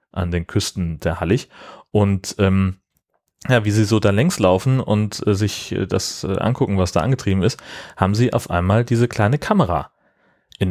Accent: German